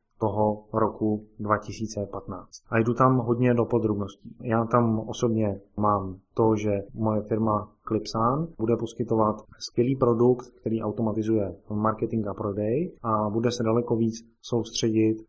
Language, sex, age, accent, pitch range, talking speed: Czech, male, 30-49, native, 105-125 Hz, 130 wpm